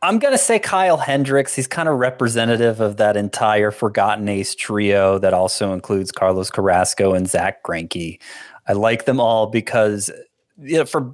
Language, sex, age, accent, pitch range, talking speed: English, male, 30-49, American, 105-135 Hz, 160 wpm